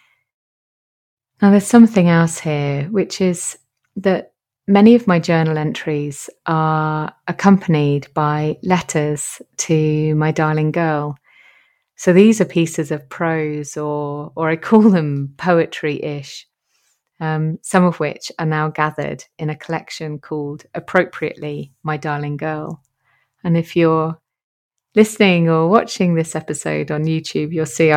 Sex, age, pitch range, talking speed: female, 30-49, 150-175 Hz, 130 wpm